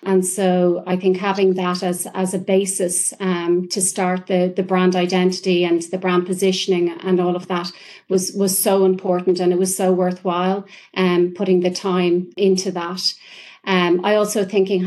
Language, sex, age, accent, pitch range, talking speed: English, female, 40-59, Irish, 185-200 Hz, 180 wpm